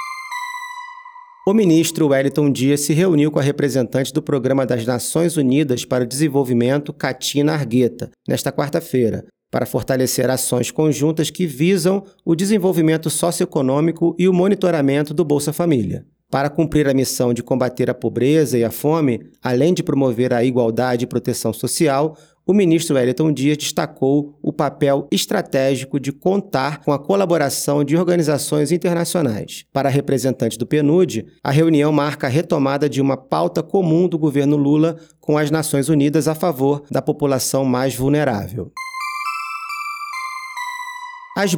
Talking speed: 140 wpm